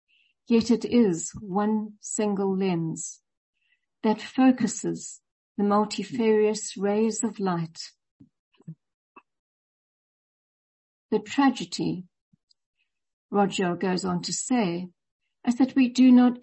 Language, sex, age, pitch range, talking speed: English, female, 60-79, 185-235 Hz, 90 wpm